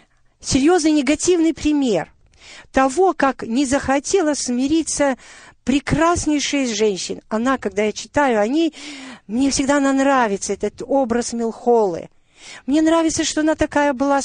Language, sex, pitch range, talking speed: Russian, female, 235-320 Hz, 120 wpm